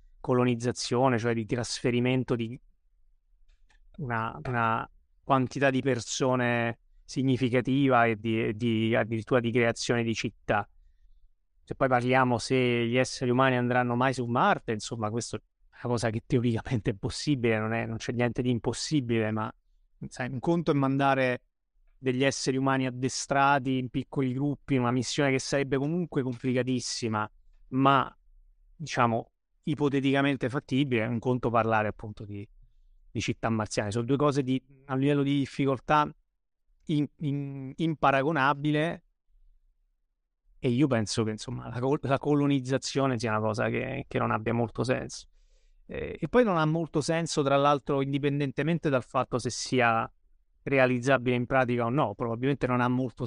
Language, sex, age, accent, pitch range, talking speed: Italian, male, 30-49, native, 115-135 Hz, 145 wpm